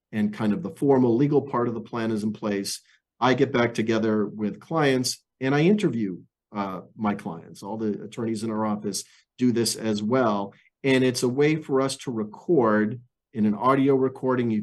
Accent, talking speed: American, 195 wpm